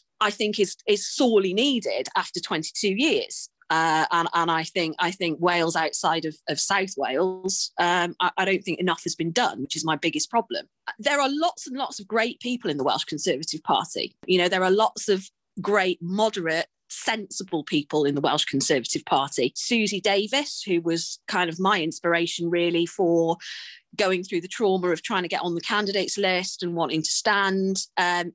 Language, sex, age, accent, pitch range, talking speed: English, female, 30-49, British, 175-220 Hz, 190 wpm